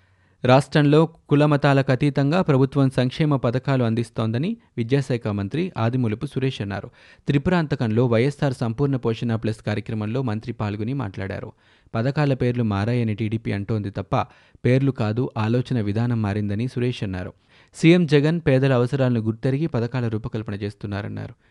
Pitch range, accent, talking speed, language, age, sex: 110-135 Hz, native, 115 wpm, Telugu, 30-49, male